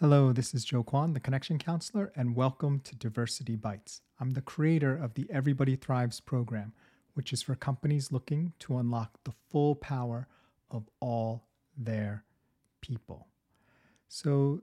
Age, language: 40-59, English